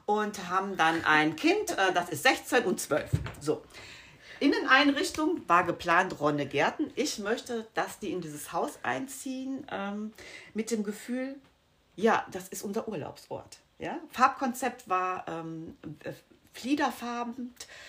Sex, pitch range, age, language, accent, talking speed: female, 155-235 Hz, 40-59, German, German, 115 wpm